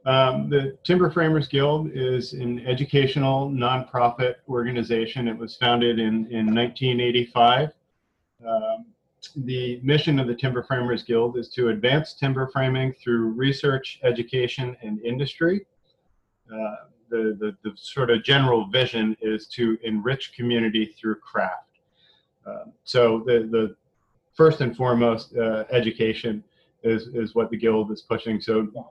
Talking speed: 135 wpm